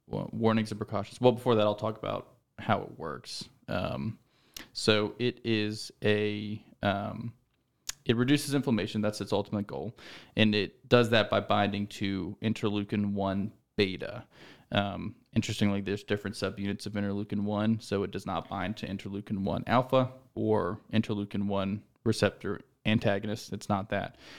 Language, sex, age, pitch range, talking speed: English, male, 20-39, 100-110 Hz, 150 wpm